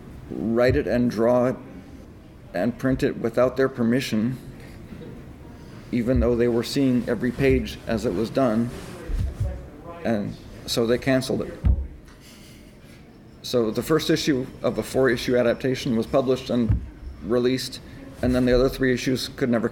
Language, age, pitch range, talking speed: English, 40-59, 110-130 Hz, 145 wpm